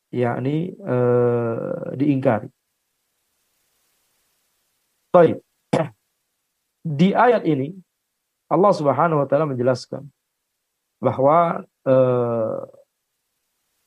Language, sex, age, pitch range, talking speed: Indonesian, male, 50-69, 125-160 Hz, 65 wpm